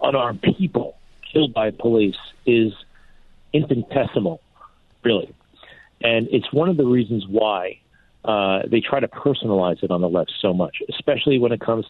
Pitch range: 105-135 Hz